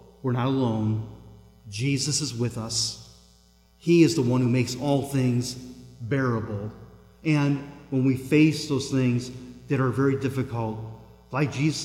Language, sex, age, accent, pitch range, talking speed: English, male, 40-59, American, 115-150 Hz, 145 wpm